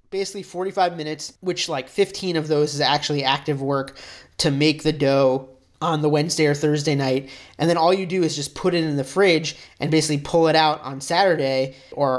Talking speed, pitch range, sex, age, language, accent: 205 wpm, 140-165 Hz, male, 30-49, English, American